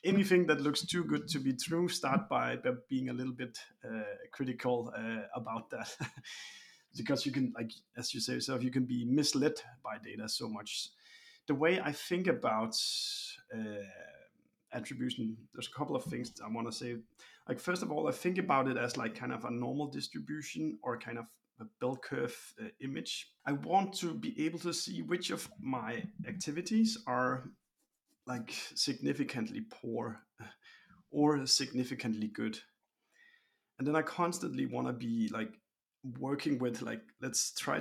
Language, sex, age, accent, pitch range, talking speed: English, male, 30-49, Danish, 120-175 Hz, 165 wpm